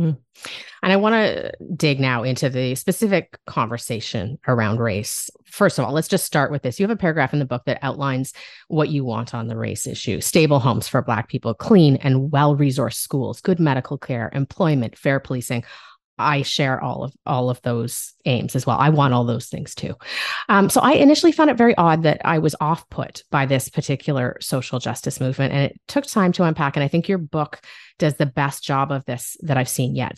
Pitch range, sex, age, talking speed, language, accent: 130-160 Hz, female, 30-49, 215 wpm, English, American